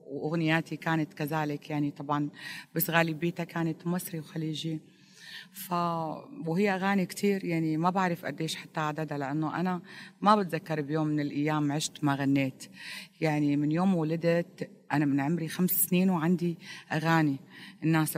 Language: Arabic